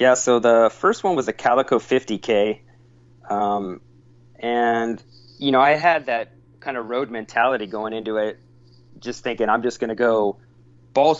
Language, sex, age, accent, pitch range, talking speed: English, male, 30-49, American, 105-125 Hz, 160 wpm